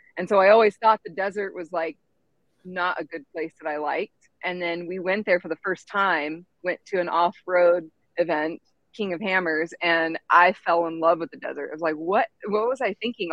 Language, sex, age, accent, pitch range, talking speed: English, female, 30-49, American, 165-200 Hz, 225 wpm